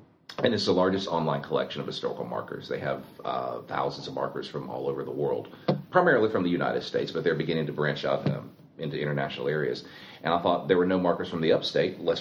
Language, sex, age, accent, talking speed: English, male, 40-59, American, 225 wpm